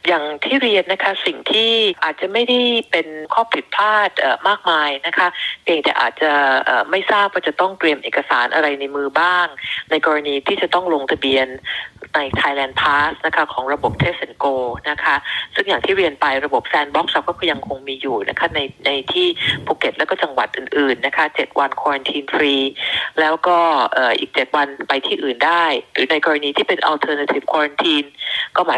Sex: female